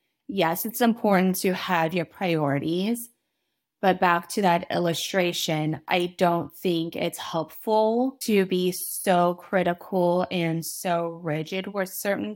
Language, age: English, 20-39